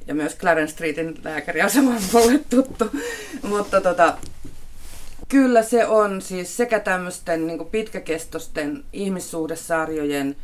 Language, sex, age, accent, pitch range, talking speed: Finnish, female, 30-49, native, 145-200 Hz, 110 wpm